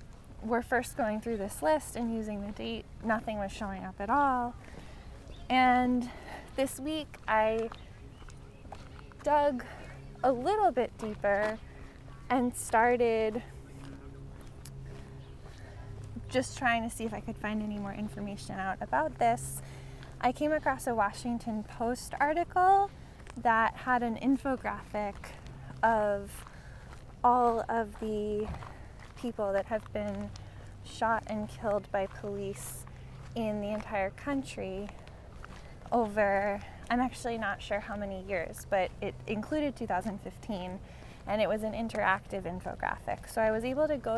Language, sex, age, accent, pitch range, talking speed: English, female, 10-29, American, 200-245 Hz, 125 wpm